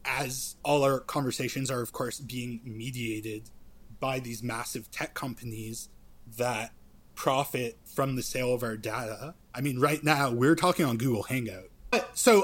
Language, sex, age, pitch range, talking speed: English, male, 20-39, 120-170 Hz, 160 wpm